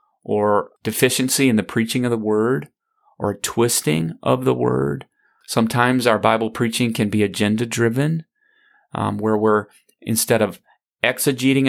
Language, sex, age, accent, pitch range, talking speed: English, male, 30-49, American, 105-130 Hz, 140 wpm